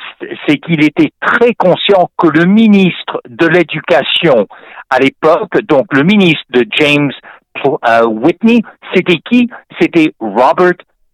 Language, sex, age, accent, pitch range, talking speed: French, male, 60-79, French, 125-195 Hz, 120 wpm